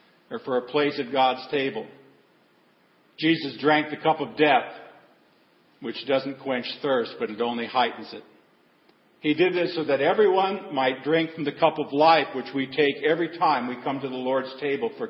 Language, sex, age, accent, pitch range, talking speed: English, male, 50-69, American, 130-160 Hz, 185 wpm